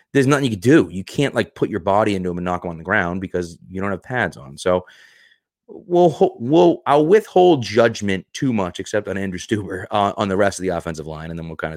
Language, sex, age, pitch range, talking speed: English, male, 30-49, 90-115 Hz, 250 wpm